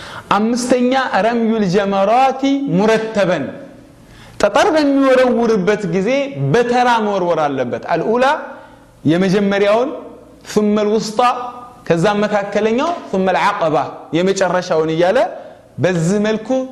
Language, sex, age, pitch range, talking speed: Amharic, male, 30-49, 190-255 Hz, 70 wpm